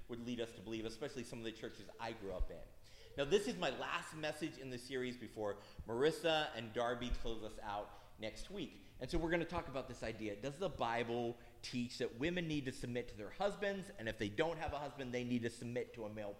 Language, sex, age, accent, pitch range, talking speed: English, male, 30-49, American, 110-150 Hz, 245 wpm